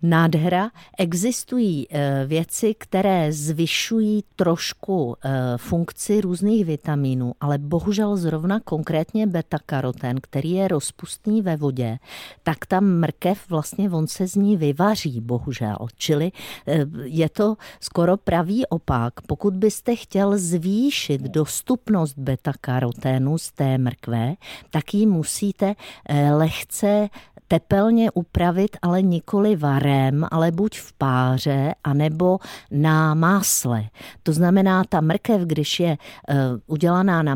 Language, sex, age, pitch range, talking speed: Czech, female, 50-69, 145-185 Hz, 110 wpm